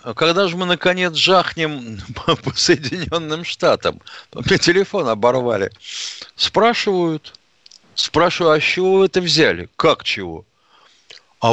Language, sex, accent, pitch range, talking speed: Russian, male, native, 120-180 Hz, 105 wpm